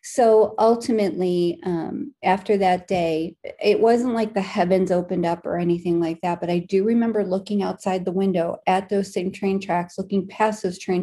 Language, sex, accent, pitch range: English, female, American, 175-205 Hz